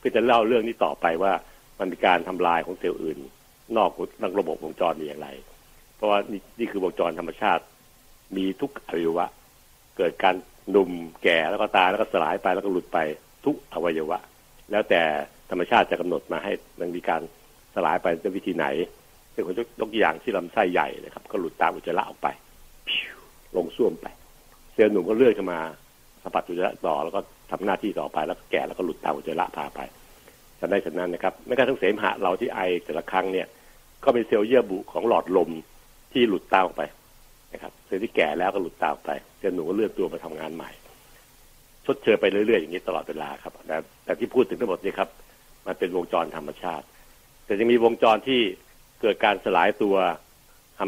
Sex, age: male, 60-79